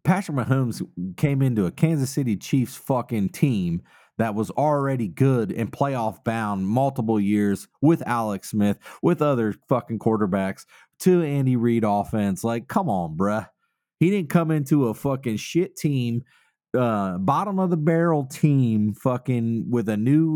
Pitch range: 110-160 Hz